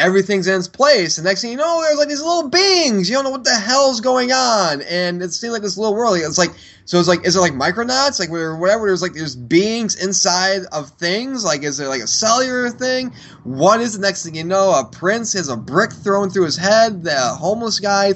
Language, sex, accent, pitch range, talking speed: English, male, American, 150-215 Hz, 245 wpm